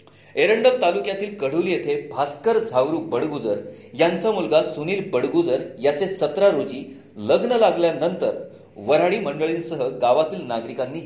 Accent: native